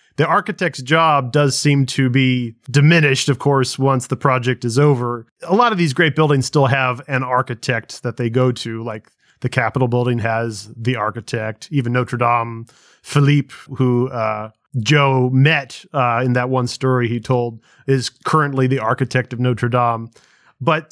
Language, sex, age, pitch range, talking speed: English, male, 30-49, 120-145 Hz, 170 wpm